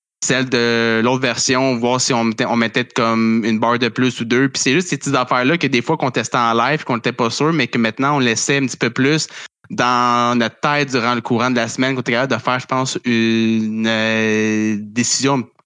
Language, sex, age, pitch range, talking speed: French, male, 20-39, 115-135 Hz, 240 wpm